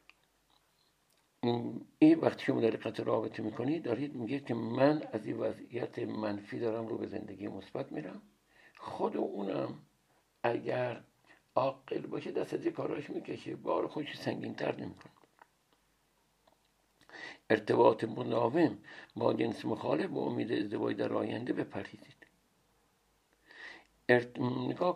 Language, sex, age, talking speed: Persian, male, 60-79, 115 wpm